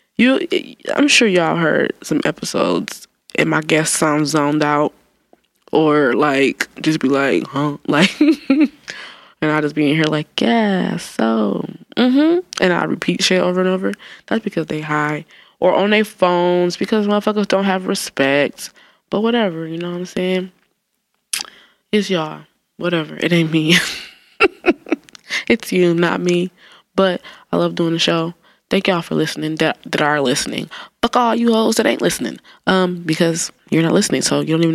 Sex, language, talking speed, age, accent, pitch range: female, English, 170 wpm, 20-39, American, 155-200 Hz